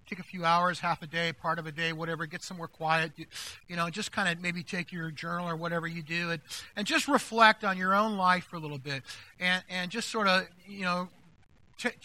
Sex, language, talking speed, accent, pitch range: male, English, 245 wpm, American, 145-210 Hz